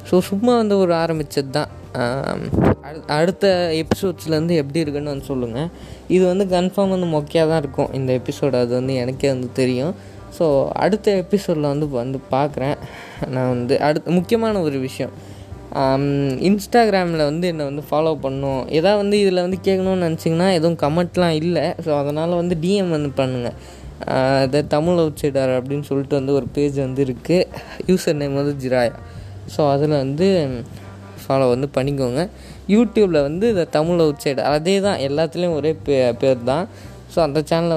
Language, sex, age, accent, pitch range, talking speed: Tamil, female, 20-39, native, 135-175 Hz, 150 wpm